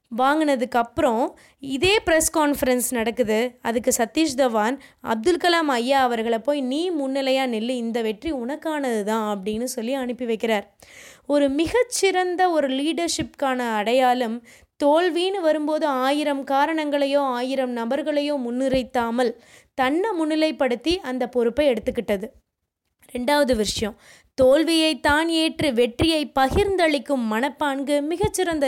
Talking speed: 105 wpm